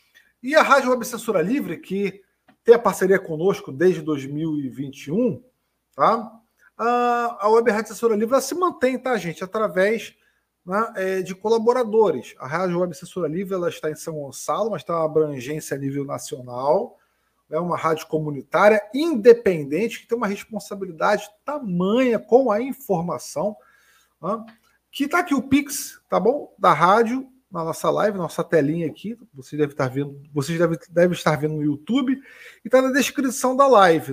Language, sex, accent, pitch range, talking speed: Portuguese, male, Brazilian, 165-235 Hz, 165 wpm